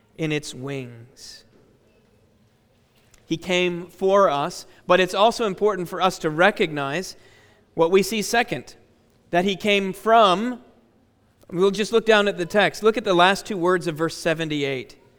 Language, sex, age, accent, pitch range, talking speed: English, male, 40-59, American, 145-210 Hz, 155 wpm